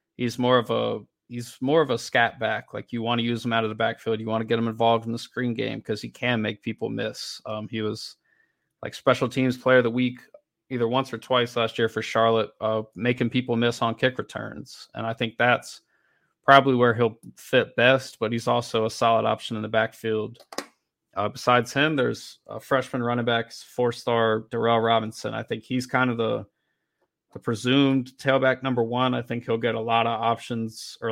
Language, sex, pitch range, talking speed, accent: English, male, 115-125 Hz, 215 wpm, American